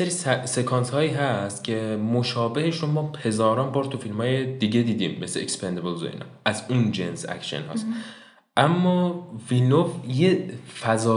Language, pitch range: Persian, 100-130 Hz